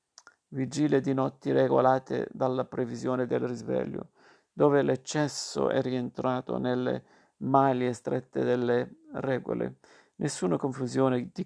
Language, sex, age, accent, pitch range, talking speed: Italian, male, 50-69, native, 125-135 Hz, 105 wpm